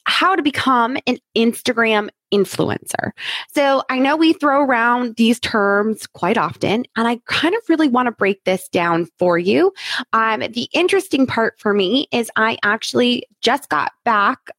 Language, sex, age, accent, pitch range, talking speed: English, female, 20-39, American, 205-260 Hz, 165 wpm